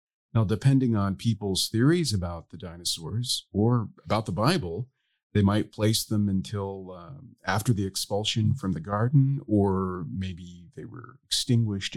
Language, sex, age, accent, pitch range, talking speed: English, male, 40-59, American, 95-130 Hz, 145 wpm